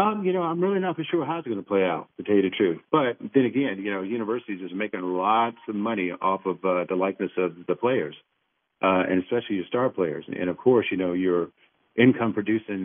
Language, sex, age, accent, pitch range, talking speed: English, male, 50-69, American, 95-120 Hz, 240 wpm